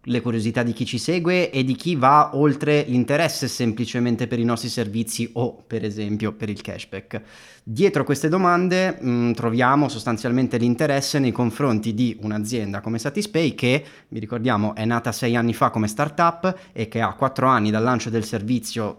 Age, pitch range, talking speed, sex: 30-49, 110-140 Hz, 170 wpm, male